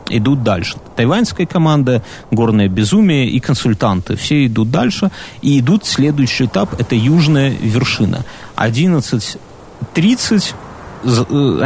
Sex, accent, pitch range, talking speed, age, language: male, native, 115-150 Hz, 100 wpm, 30-49, Russian